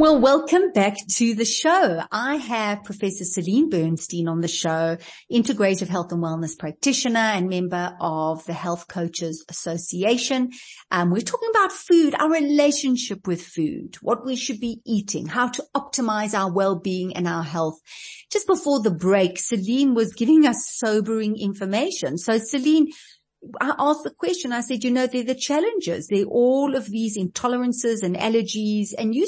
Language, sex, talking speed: English, female, 165 wpm